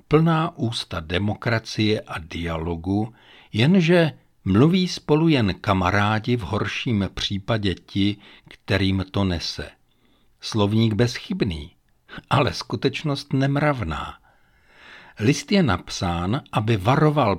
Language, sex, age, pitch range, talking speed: Czech, male, 60-79, 95-135 Hz, 95 wpm